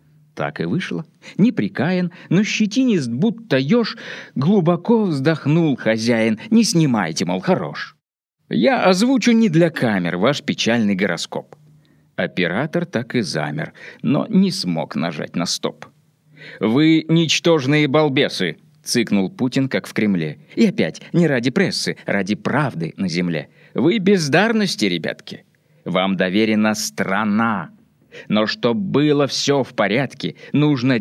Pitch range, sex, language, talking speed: 125-180 Hz, male, Russian, 125 wpm